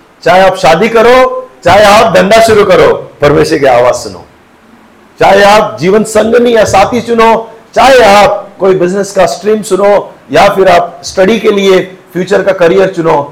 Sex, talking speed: male, 120 wpm